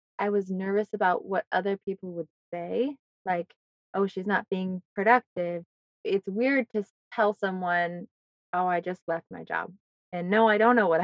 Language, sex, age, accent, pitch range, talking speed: English, female, 20-39, American, 170-205 Hz, 175 wpm